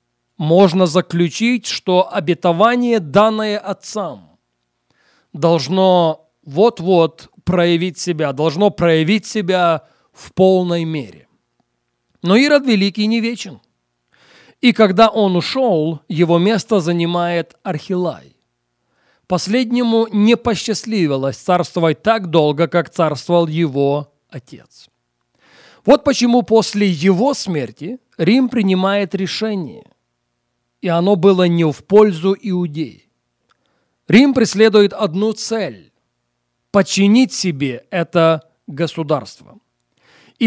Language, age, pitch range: Russian, 40-59, 160-215 Hz